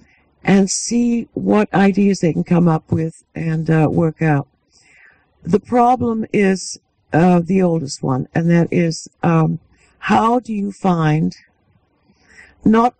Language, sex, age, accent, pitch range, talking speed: English, female, 60-79, American, 145-195 Hz, 135 wpm